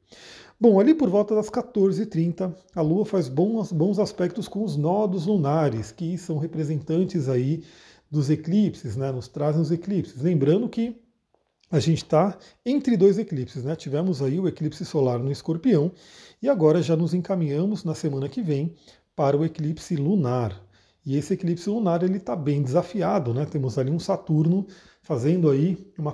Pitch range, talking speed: 150-195 Hz, 165 wpm